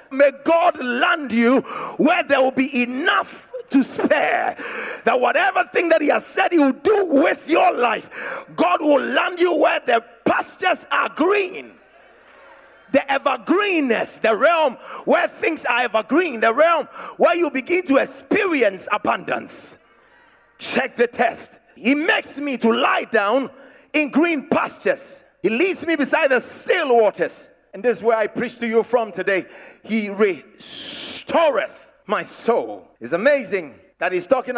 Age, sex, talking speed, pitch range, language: 40-59, male, 150 wpm, 205-310 Hz, English